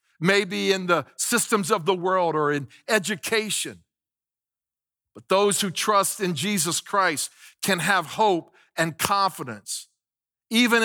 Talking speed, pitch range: 125 wpm, 160-215 Hz